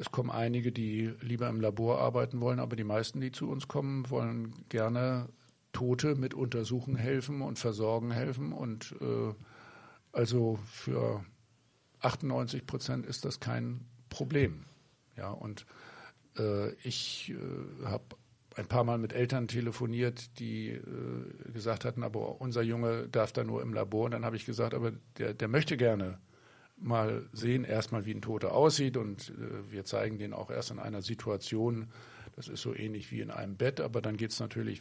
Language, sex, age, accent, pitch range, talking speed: German, male, 50-69, German, 110-130 Hz, 170 wpm